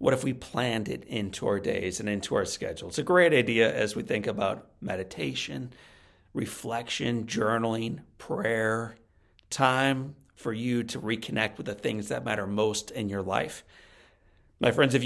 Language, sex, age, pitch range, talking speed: English, male, 40-59, 110-135 Hz, 165 wpm